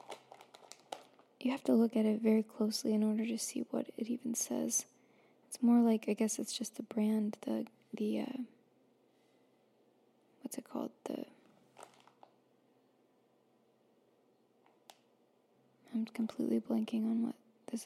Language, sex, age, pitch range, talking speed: English, female, 20-39, 220-250 Hz, 130 wpm